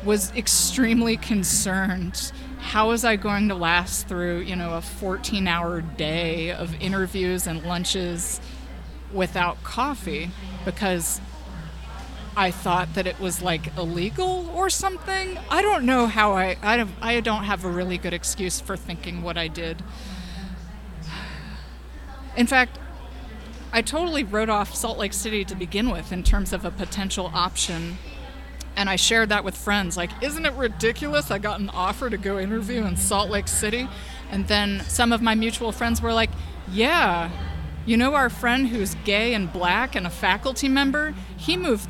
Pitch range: 175-230 Hz